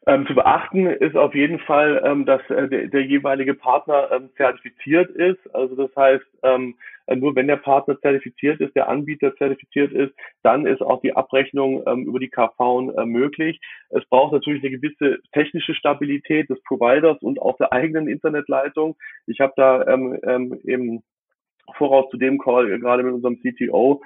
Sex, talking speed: male, 175 wpm